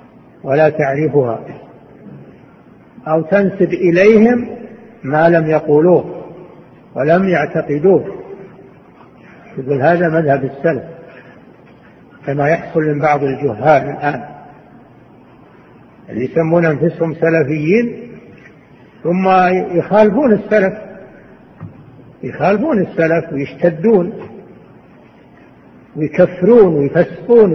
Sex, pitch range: male, 150-200 Hz